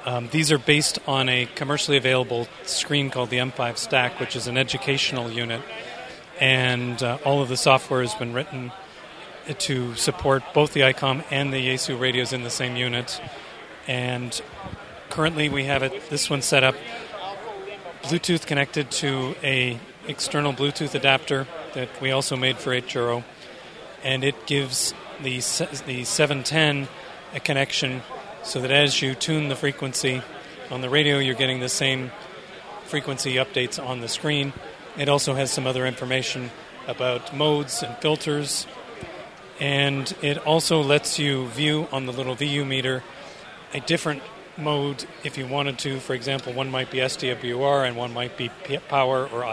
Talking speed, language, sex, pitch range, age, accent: 155 wpm, English, male, 130-145 Hz, 40-59, American